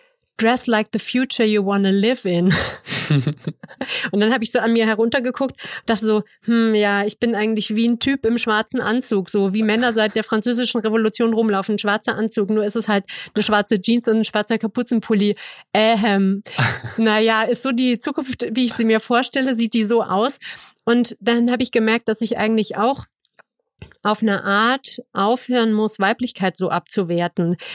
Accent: German